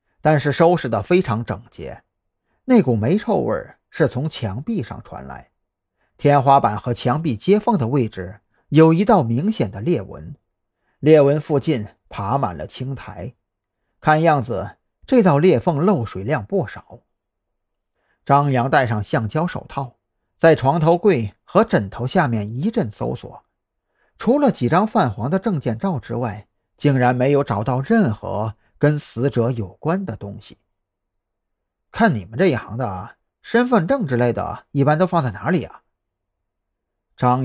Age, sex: 50-69, male